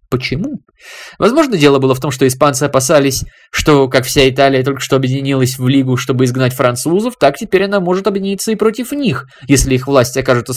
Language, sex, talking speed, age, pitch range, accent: Russian, male, 185 wpm, 20-39, 120-180 Hz, native